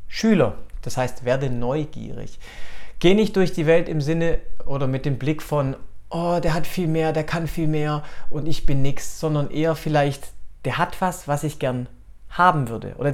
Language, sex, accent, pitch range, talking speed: German, male, German, 125-160 Hz, 190 wpm